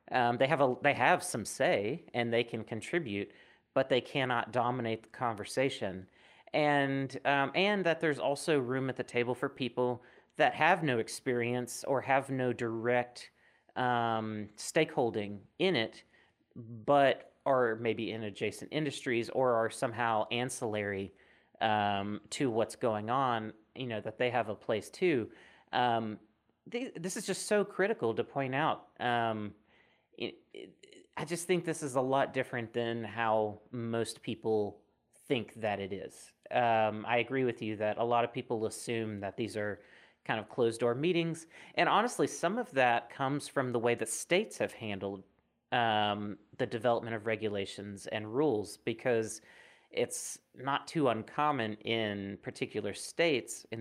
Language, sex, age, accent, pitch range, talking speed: English, male, 30-49, American, 110-135 Hz, 155 wpm